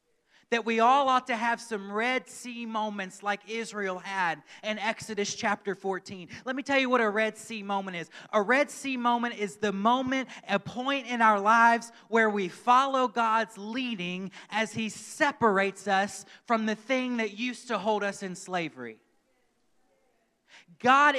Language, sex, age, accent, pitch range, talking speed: English, male, 30-49, American, 210-260 Hz, 165 wpm